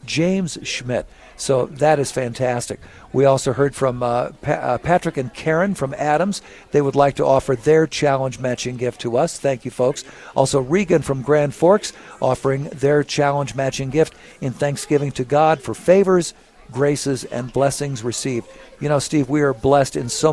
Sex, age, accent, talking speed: male, 50-69, American, 170 wpm